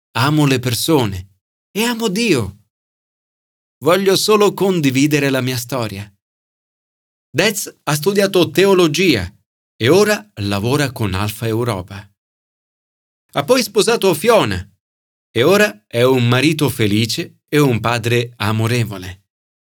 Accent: native